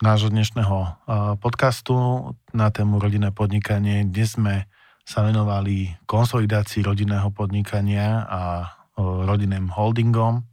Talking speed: 95 wpm